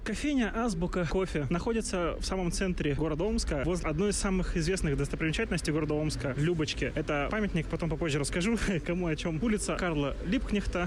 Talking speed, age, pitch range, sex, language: 165 wpm, 20-39, 145-190 Hz, male, Russian